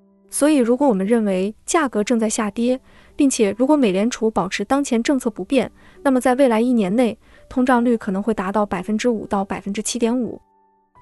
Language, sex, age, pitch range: Chinese, female, 20-39, 200-255 Hz